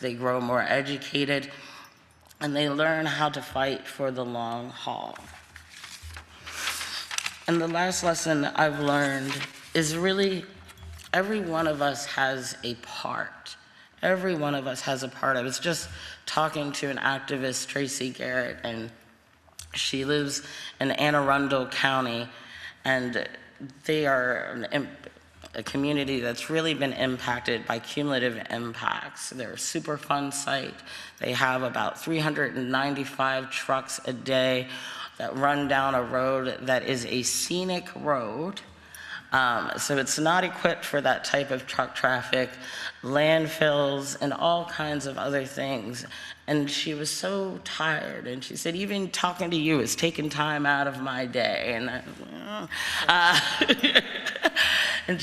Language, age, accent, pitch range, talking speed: English, 30-49, American, 130-155 Hz, 135 wpm